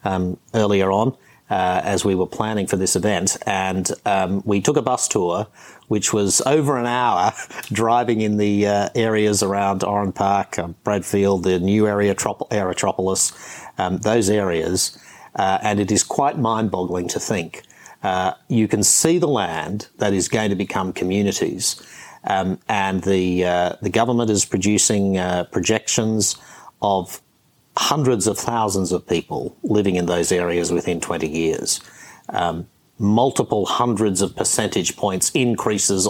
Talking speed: 150 wpm